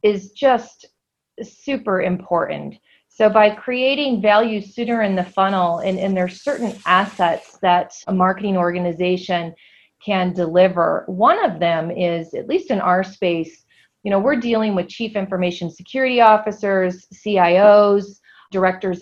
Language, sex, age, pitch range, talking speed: English, female, 30-49, 180-220 Hz, 140 wpm